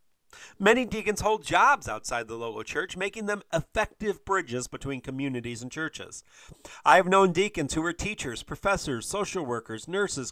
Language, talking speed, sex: English, 155 wpm, male